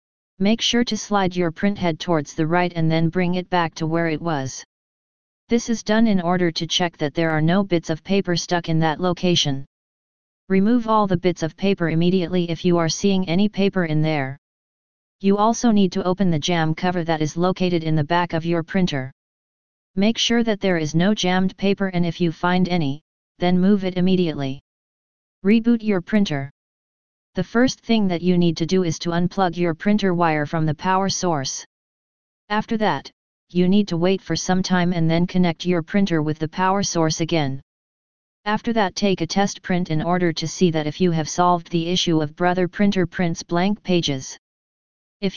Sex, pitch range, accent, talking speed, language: female, 165-195 Hz, American, 200 wpm, English